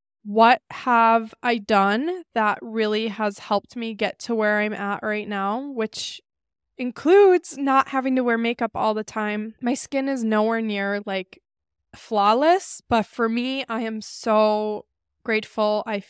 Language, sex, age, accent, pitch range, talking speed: English, female, 10-29, American, 210-245 Hz, 155 wpm